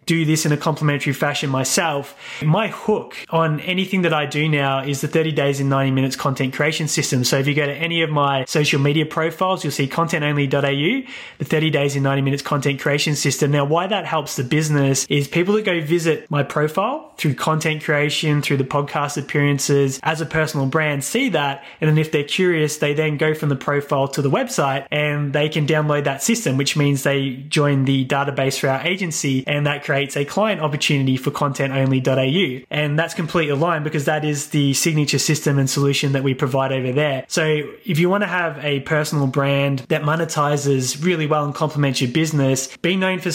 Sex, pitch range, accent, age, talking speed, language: male, 140-160 Hz, Australian, 20-39, 205 wpm, English